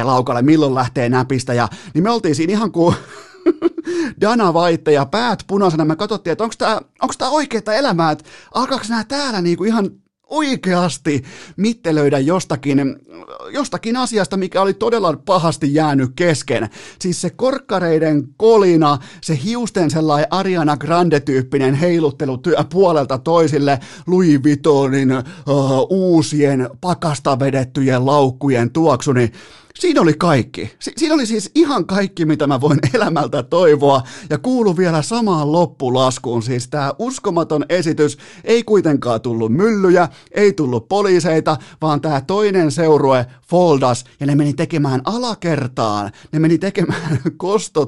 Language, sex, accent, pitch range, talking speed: Finnish, male, native, 140-190 Hz, 130 wpm